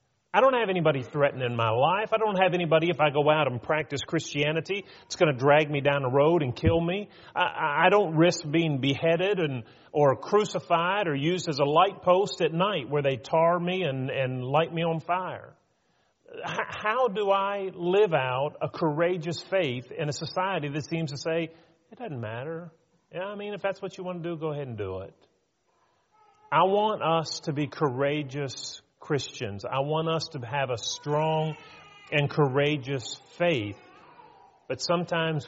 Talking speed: 185 wpm